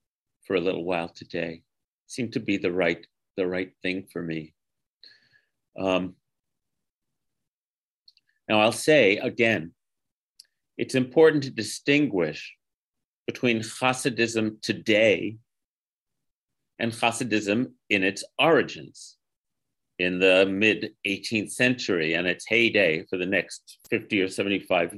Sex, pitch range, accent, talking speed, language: male, 105-125 Hz, American, 110 wpm, English